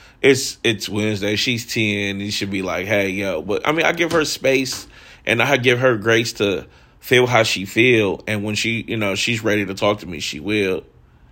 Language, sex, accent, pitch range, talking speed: English, male, American, 90-120 Hz, 215 wpm